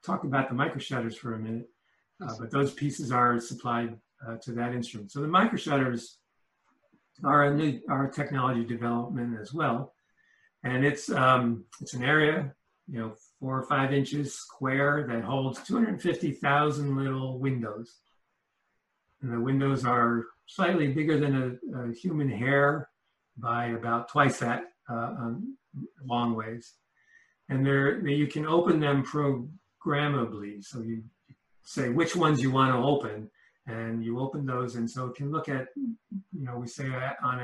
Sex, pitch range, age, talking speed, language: male, 115-145 Hz, 60-79, 160 wpm, English